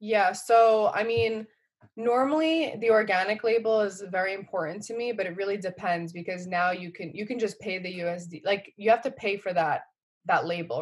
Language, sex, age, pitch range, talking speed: English, female, 20-39, 175-215 Hz, 200 wpm